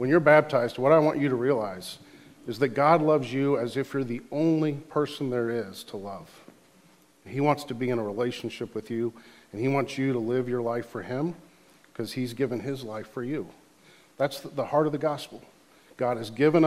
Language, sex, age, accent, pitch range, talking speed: English, male, 40-59, American, 120-150 Hz, 210 wpm